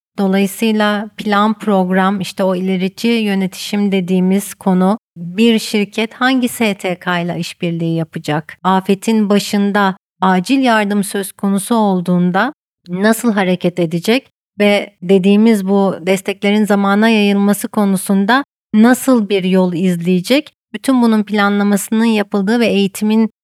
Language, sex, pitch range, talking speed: Turkish, female, 190-225 Hz, 110 wpm